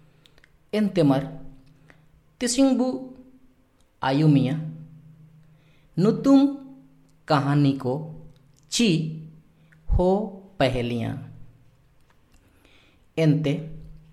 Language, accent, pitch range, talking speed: English, Indian, 135-165 Hz, 40 wpm